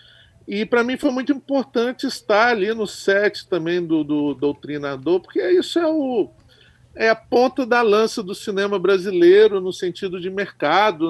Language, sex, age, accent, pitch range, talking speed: Portuguese, male, 50-69, Brazilian, 160-225 Hz, 160 wpm